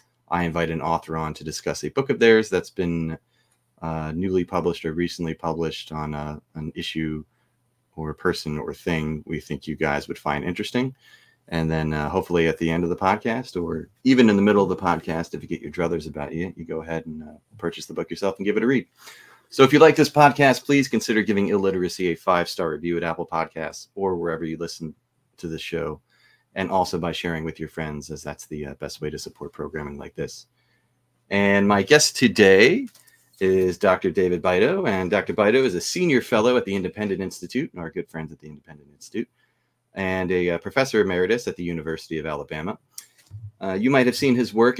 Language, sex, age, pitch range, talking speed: English, male, 30-49, 80-105 Hz, 215 wpm